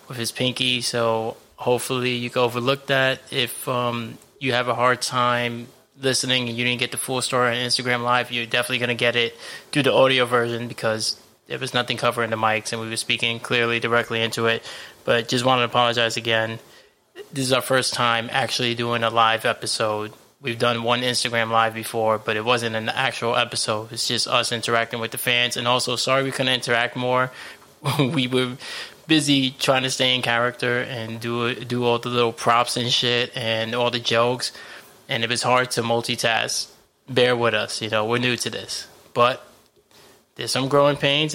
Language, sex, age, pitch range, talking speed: English, male, 20-39, 115-130 Hz, 195 wpm